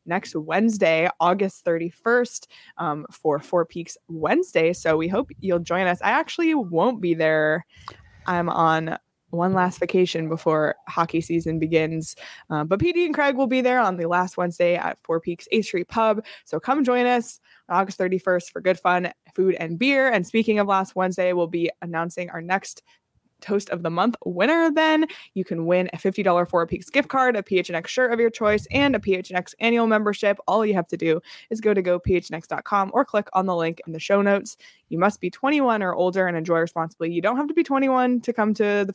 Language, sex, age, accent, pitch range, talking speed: English, female, 20-39, American, 170-230 Hz, 205 wpm